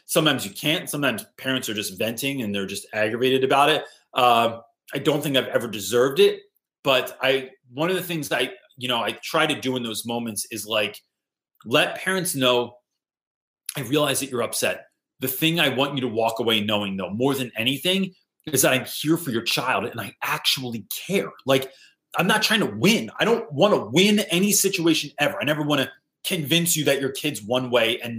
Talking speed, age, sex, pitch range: 205 wpm, 30-49, male, 120-160 Hz